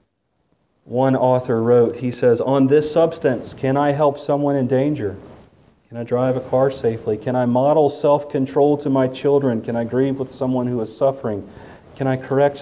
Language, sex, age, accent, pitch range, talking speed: English, male, 40-59, American, 115-140 Hz, 180 wpm